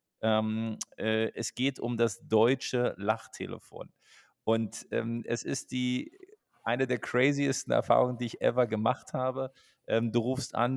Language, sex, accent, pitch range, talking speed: German, male, German, 110-125 Hz, 145 wpm